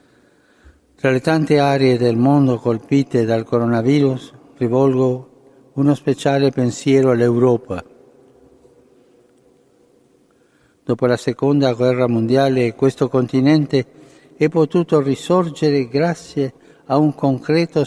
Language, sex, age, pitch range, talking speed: Italian, male, 60-79, 125-150 Hz, 95 wpm